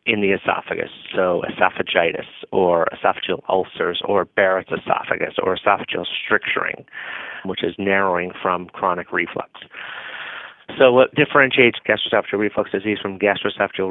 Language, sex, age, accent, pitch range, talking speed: English, male, 30-49, American, 95-105 Hz, 120 wpm